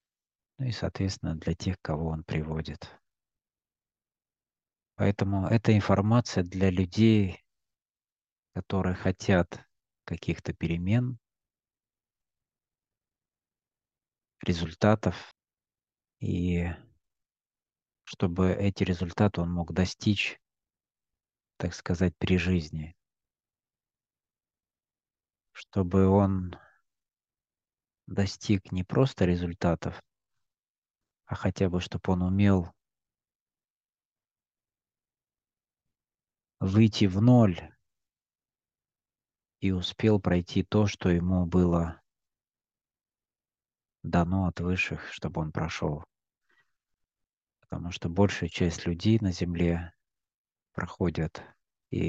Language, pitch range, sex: Russian, 85-95 Hz, male